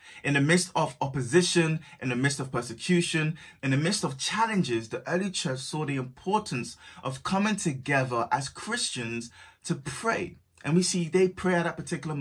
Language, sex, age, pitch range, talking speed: English, male, 20-39, 120-165 Hz, 175 wpm